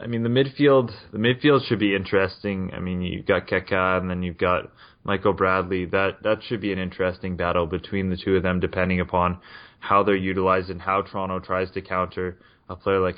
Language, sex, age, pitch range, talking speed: English, male, 20-39, 90-100 Hz, 210 wpm